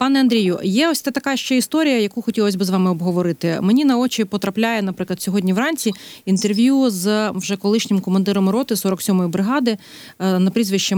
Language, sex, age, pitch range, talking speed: Ukrainian, female, 30-49, 180-225 Hz, 165 wpm